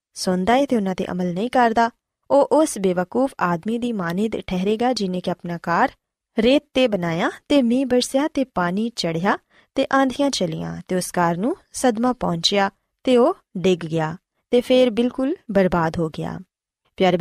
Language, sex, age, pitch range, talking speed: Punjabi, female, 20-39, 185-250 Hz, 165 wpm